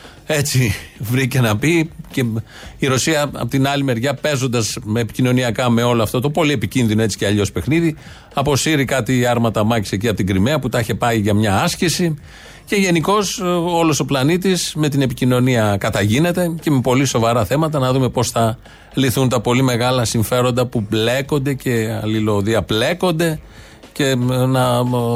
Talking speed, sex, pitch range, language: 165 wpm, male, 115-150 Hz, Greek